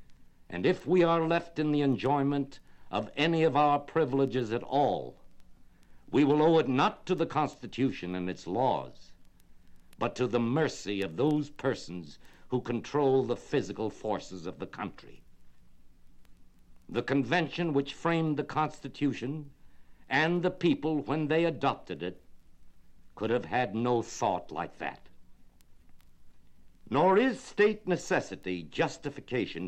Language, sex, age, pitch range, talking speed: English, male, 60-79, 90-155 Hz, 135 wpm